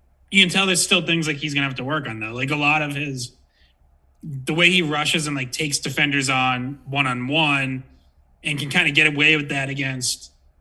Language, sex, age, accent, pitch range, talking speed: English, male, 30-49, American, 120-160 Hz, 225 wpm